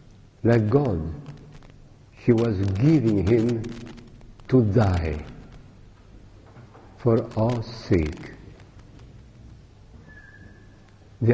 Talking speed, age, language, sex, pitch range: 65 wpm, 60-79, English, male, 100-135 Hz